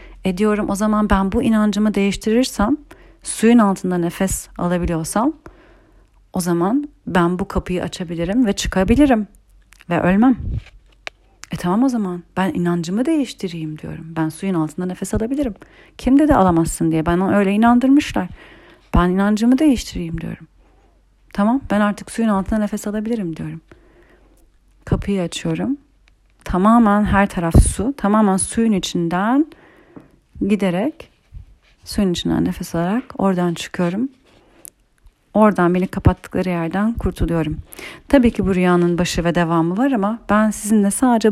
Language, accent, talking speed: Turkish, native, 125 wpm